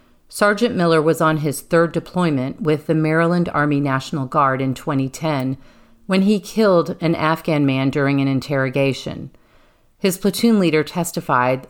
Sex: female